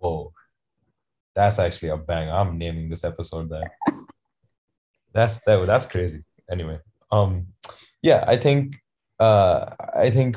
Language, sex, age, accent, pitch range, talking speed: English, male, 20-39, Indian, 95-110 Hz, 125 wpm